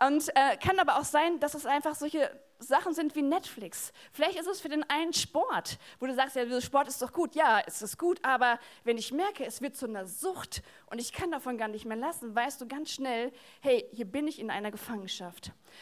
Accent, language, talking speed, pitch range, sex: German, German, 230 wpm, 230-305 Hz, female